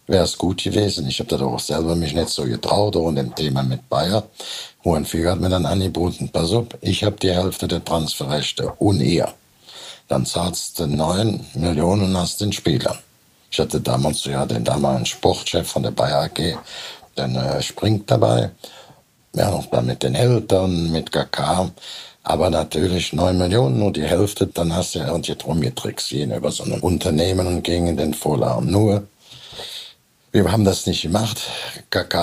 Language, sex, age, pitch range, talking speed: German, male, 60-79, 75-100 Hz, 180 wpm